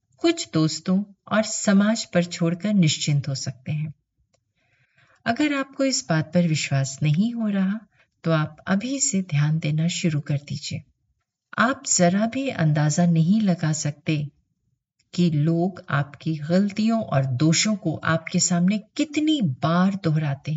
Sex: female